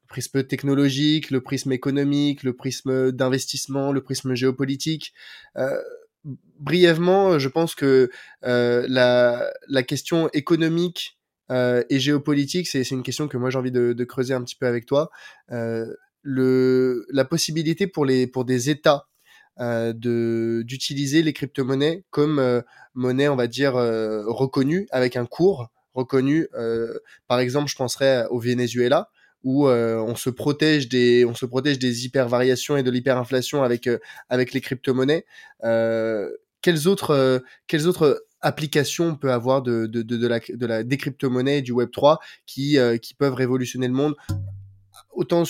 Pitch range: 125-145 Hz